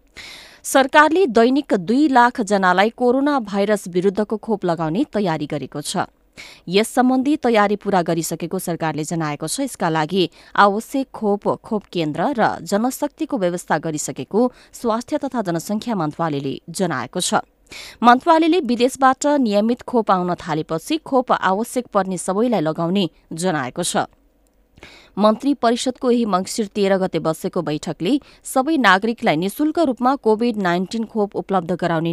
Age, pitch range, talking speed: 20-39, 170-235 Hz, 110 wpm